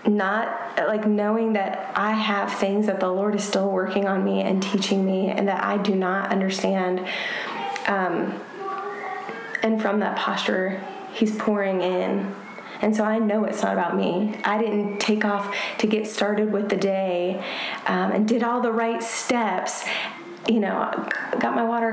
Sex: female